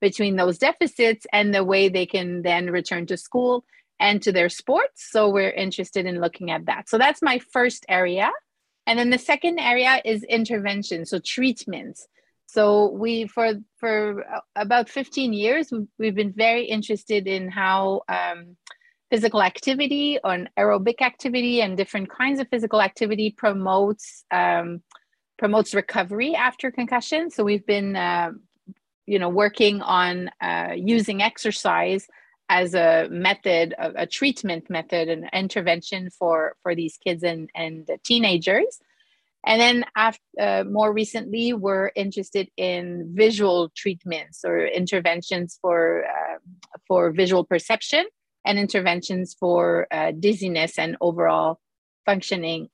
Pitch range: 180-225 Hz